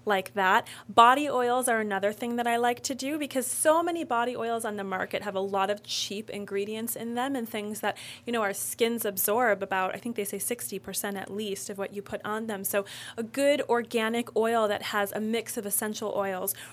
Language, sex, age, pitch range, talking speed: English, female, 30-49, 205-245 Hz, 220 wpm